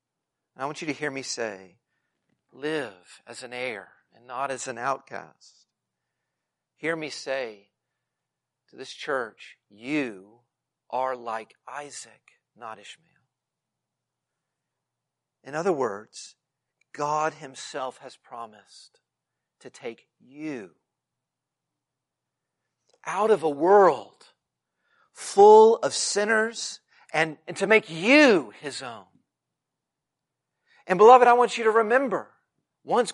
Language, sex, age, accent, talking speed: English, male, 50-69, American, 110 wpm